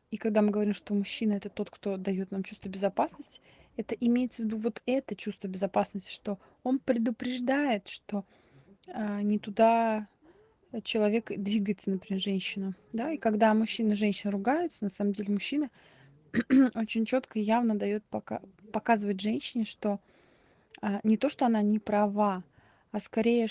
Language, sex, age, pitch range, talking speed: Russian, female, 20-39, 205-235 Hz, 150 wpm